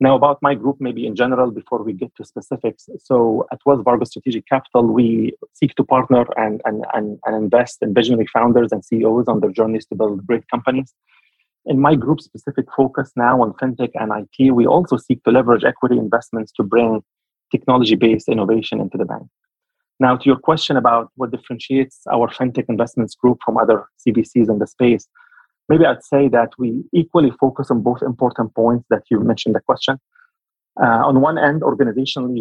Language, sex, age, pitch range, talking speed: English, male, 30-49, 115-135 Hz, 185 wpm